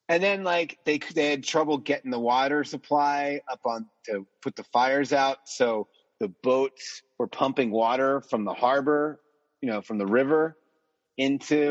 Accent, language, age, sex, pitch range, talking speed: American, English, 30-49, male, 105-145 Hz, 170 wpm